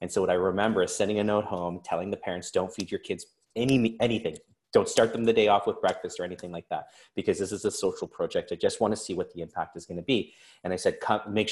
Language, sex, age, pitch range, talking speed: English, male, 30-49, 95-155 Hz, 280 wpm